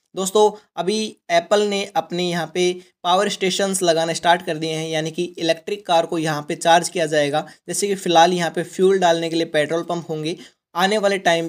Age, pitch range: 20-39, 155-185 Hz